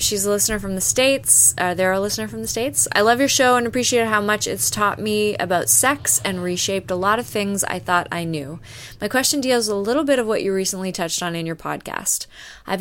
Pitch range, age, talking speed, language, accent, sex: 175-220 Hz, 20-39, 250 wpm, English, American, female